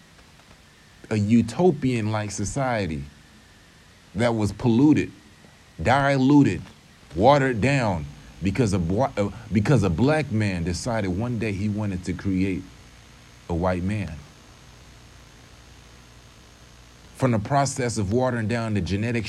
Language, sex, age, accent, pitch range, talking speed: English, male, 30-49, American, 95-125 Hz, 100 wpm